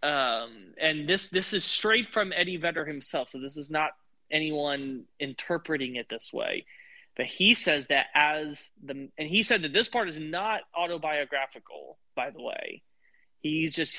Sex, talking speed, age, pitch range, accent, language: male, 165 wpm, 20-39, 135-175 Hz, American, English